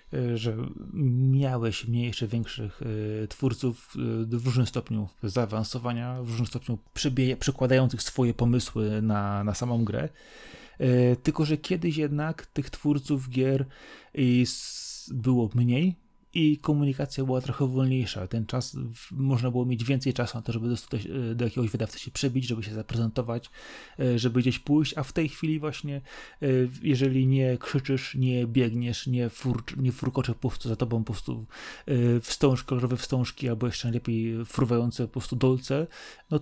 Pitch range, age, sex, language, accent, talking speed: 120-135 Hz, 30-49, male, Polish, native, 145 wpm